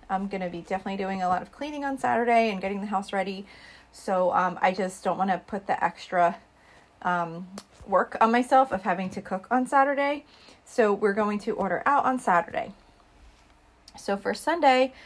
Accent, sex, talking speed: American, female, 185 wpm